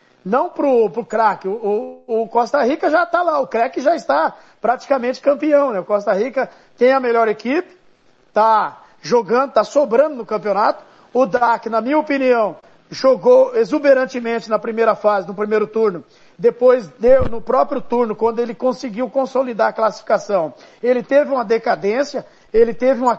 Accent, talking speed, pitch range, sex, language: Brazilian, 160 wpm, 220-270 Hz, male, Portuguese